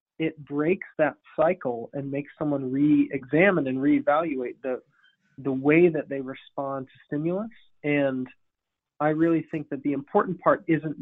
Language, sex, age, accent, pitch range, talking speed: English, male, 30-49, American, 135-165 Hz, 145 wpm